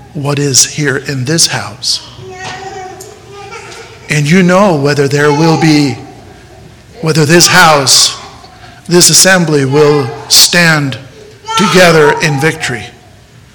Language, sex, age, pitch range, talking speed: English, male, 50-69, 120-150 Hz, 100 wpm